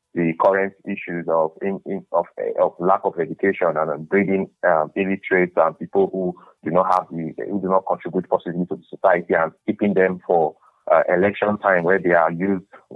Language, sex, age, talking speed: English, male, 30-49, 205 wpm